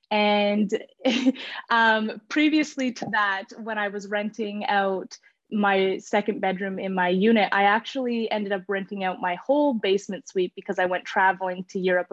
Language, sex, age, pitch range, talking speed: English, female, 20-39, 195-230 Hz, 160 wpm